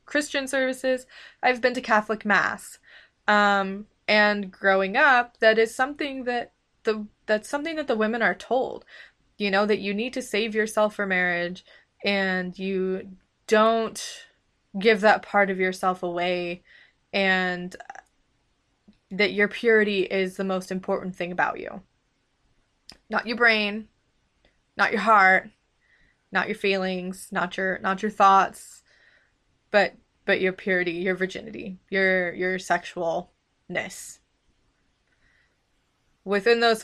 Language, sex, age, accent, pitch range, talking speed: English, female, 20-39, American, 185-225 Hz, 125 wpm